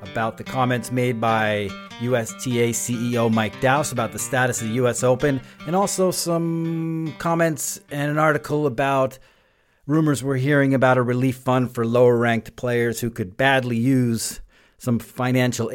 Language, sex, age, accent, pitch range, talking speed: English, male, 40-59, American, 110-130 Hz, 150 wpm